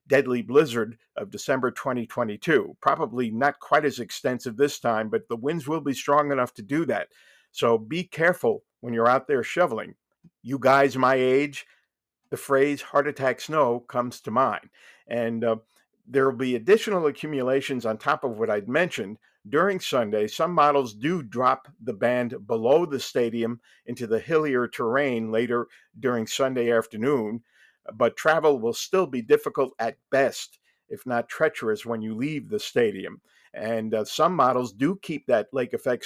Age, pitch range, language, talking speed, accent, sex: 50-69, 115-145 Hz, English, 165 wpm, American, male